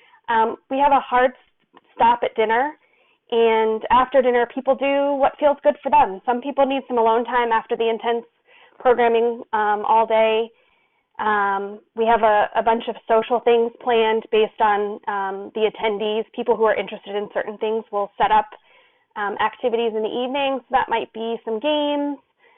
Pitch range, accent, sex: 220-280 Hz, American, female